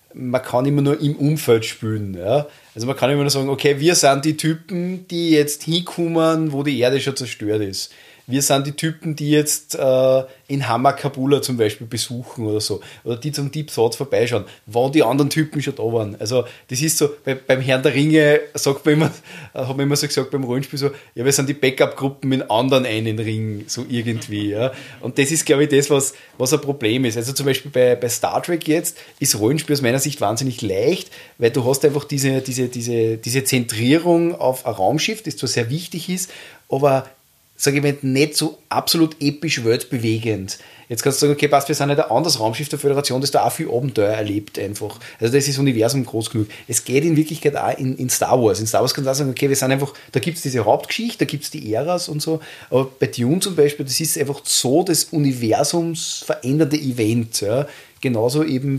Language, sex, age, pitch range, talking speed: German, male, 30-49, 120-150 Hz, 220 wpm